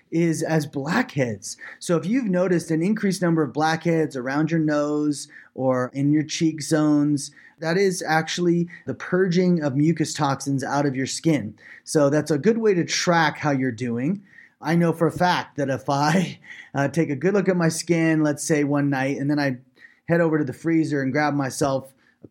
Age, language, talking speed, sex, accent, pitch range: 30-49, English, 200 wpm, male, American, 140-170 Hz